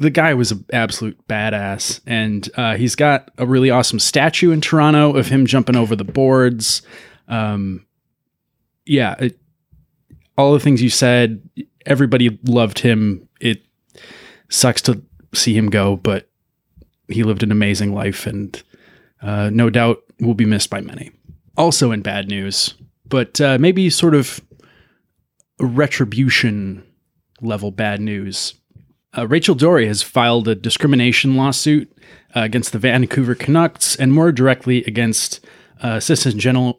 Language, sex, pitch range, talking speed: English, male, 110-135 Hz, 140 wpm